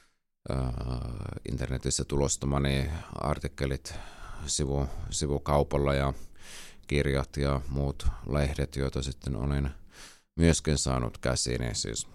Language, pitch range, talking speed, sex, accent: Finnish, 65-75 Hz, 85 wpm, male, native